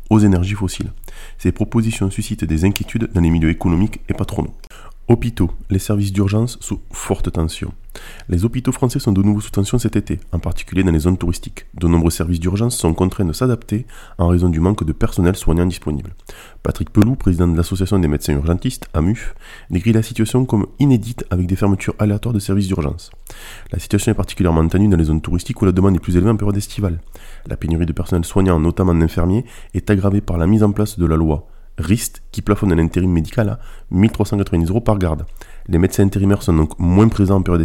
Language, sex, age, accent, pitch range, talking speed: French, male, 20-39, French, 85-110 Hz, 205 wpm